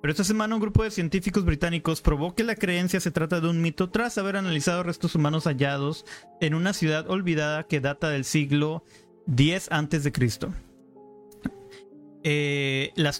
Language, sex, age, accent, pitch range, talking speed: Spanish, male, 30-49, Mexican, 140-175 Hz, 155 wpm